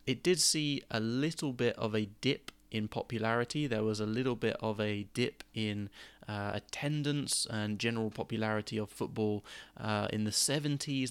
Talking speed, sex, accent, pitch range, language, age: 170 wpm, male, British, 100-115 Hz, English, 20-39